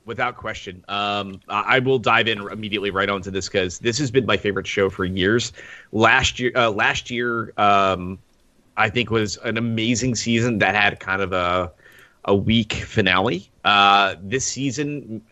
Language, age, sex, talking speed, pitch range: English, 30-49, male, 170 wpm, 95-120 Hz